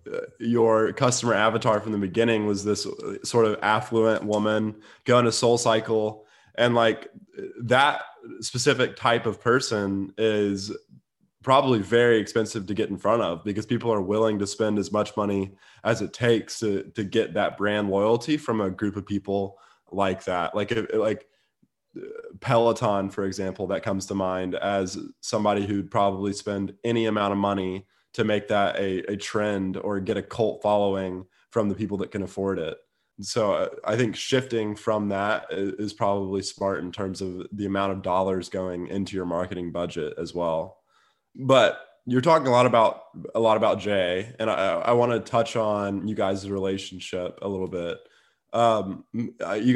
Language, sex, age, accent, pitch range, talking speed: English, male, 20-39, American, 100-115 Hz, 170 wpm